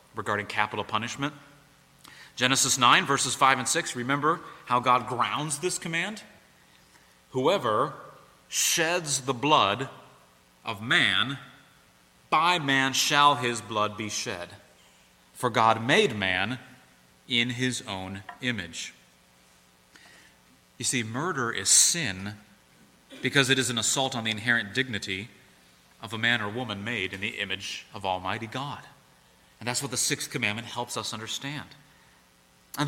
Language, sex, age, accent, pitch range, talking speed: English, male, 30-49, American, 95-145 Hz, 130 wpm